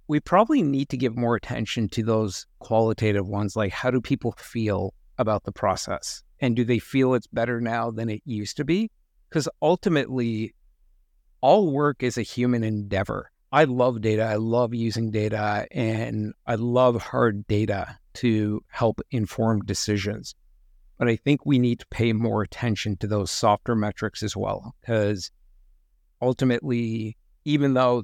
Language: English